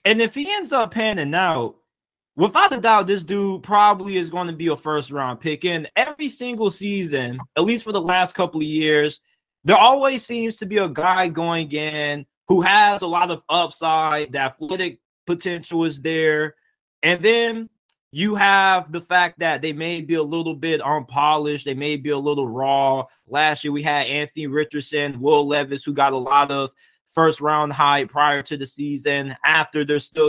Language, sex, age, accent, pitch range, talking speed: English, male, 20-39, American, 150-200 Hz, 190 wpm